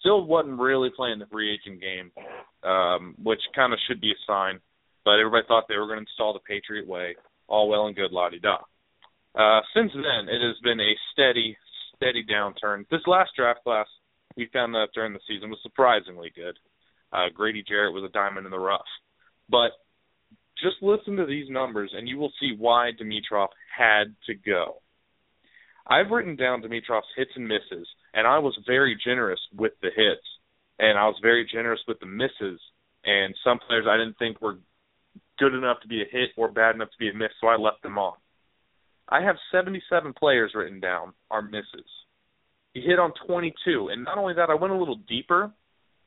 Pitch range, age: 105-140 Hz, 30-49